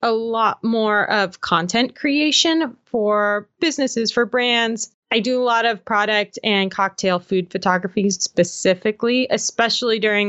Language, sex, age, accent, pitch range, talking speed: English, female, 20-39, American, 190-235 Hz, 135 wpm